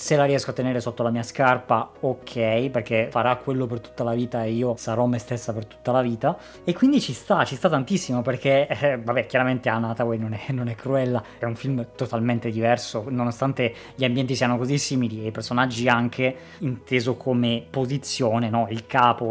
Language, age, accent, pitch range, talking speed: Italian, 20-39, native, 120-150 Hz, 200 wpm